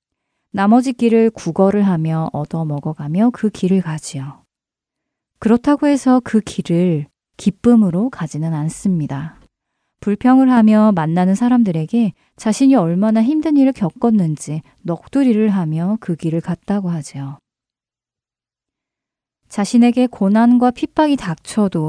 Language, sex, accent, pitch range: Korean, female, native, 165-240 Hz